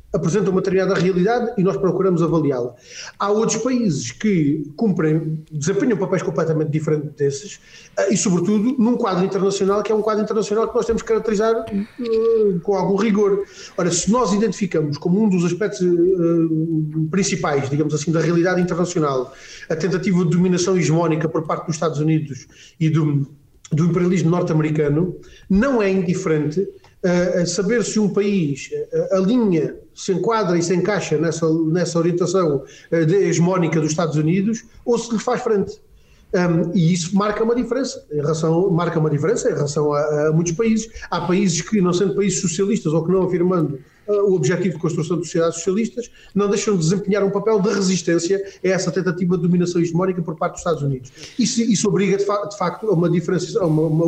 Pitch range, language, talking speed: 165-200 Hz, Portuguese, 180 wpm